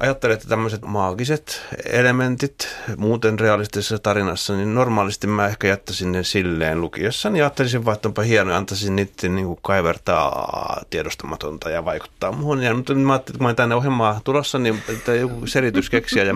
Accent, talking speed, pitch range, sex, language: native, 170 wpm, 90-120 Hz, male, Finnish